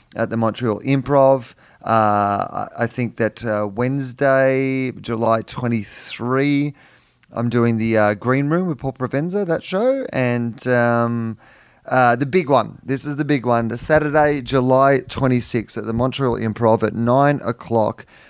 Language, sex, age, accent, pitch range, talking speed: English, male, 30-49, Australian, 110-130 Hz, 145 wpm